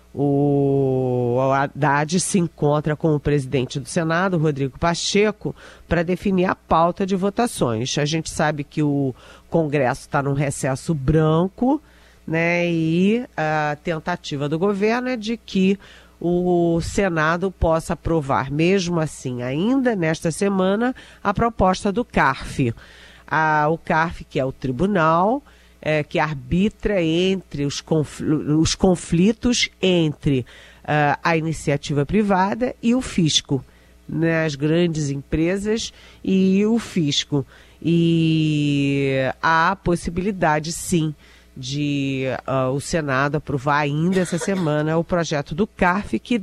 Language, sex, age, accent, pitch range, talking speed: Portuguese, female, 40-59, Brazilian, 145-185 Hz, 125 wpm